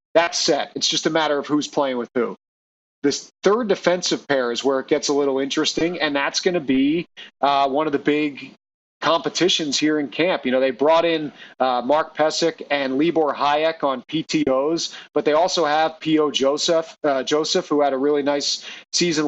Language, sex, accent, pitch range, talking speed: English, male, American, 140-160 Hz, 195 wpm